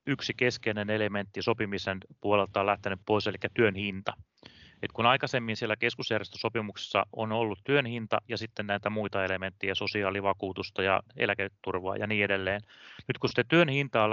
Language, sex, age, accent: Finnish, male, 30-49, native